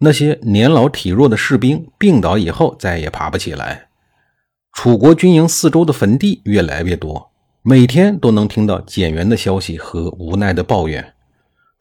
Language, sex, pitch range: Chinese, male, 95-155 Hz